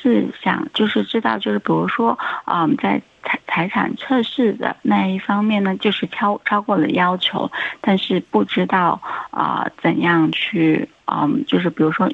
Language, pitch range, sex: Chinese, 165-225 Hz, female